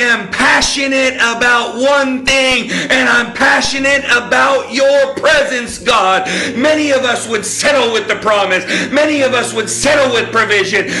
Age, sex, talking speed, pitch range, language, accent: 50-69, male, 145 wpm, 235-275 Hz, English, American